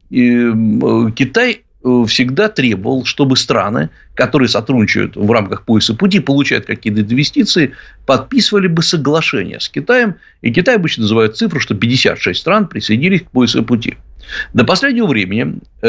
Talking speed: 130 wpm